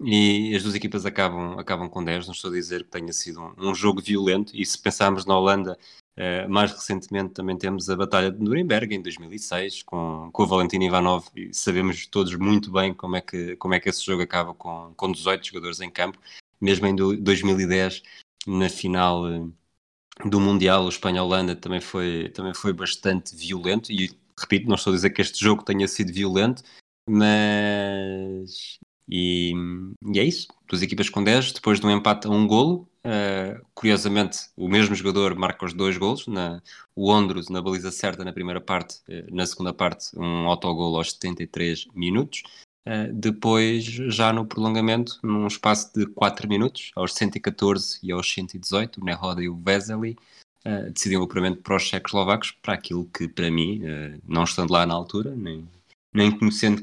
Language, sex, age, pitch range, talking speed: Portuguese, male, 20-39, 90-105 Hz, 175 wpm